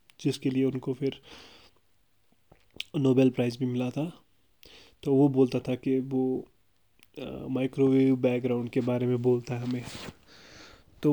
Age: 20-39